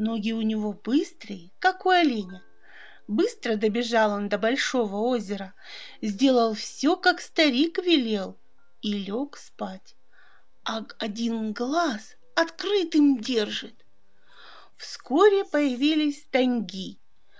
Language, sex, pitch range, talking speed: Russian, female, 220-310 Hz, 100 wpm